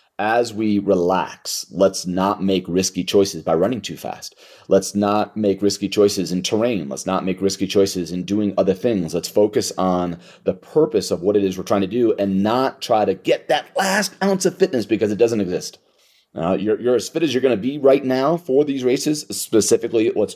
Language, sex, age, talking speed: English, male, 30-49, 210 wpm